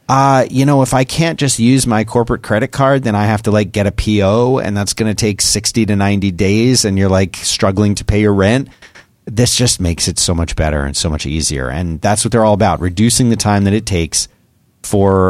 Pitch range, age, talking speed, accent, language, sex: 95-120 Hz, 30-49, 240 wpm, American, English, male